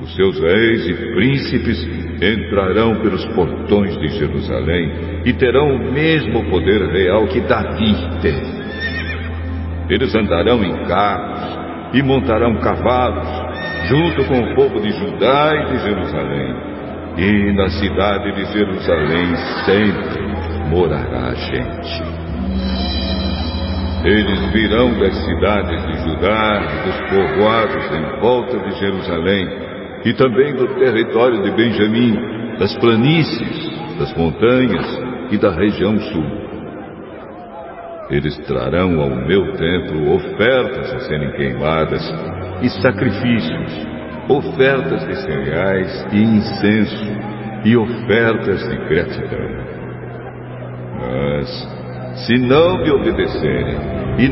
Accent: Brazilian